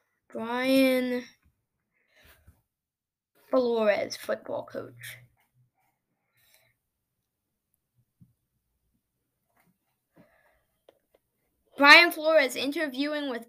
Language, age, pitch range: English, 10-29, 255-335 Hz